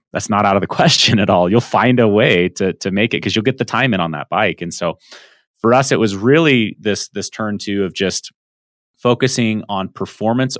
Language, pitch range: English, 85-105 Hz